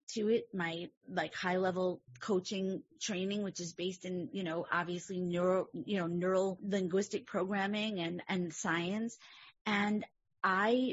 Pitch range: 175-215 Hz